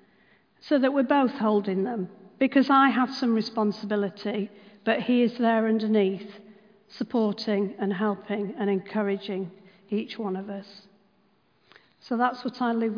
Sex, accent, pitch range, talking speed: female, British, 205-255 Hz, 135 wpm